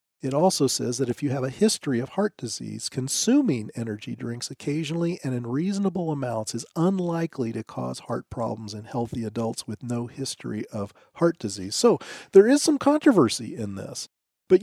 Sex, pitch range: male, 135-185 Hz